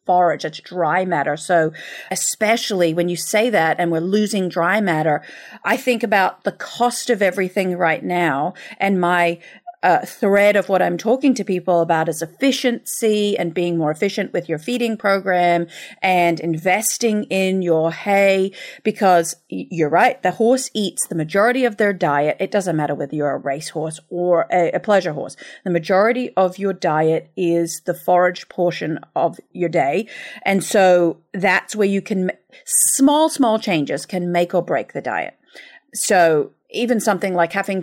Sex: female